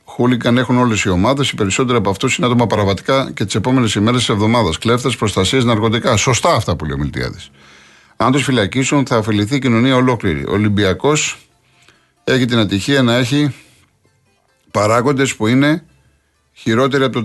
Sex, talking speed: male, 165 wpm